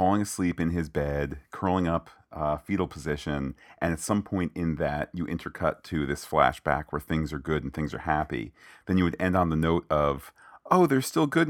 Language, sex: English, male